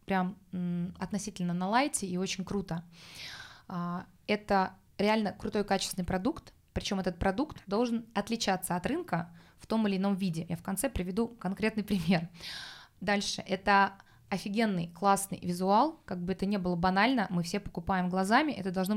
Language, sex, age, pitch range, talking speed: Russian, female, 20-39, 180-220 Hz, 150 wpm